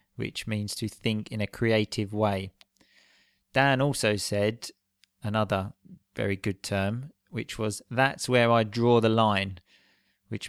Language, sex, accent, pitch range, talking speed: English, male, British, 100-115 Hz, 135 wpm